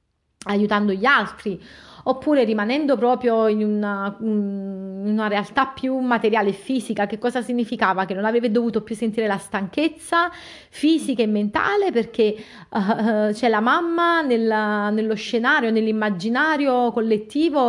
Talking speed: 135 wpm